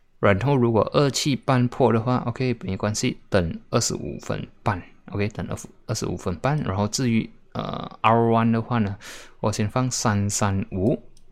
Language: Chinese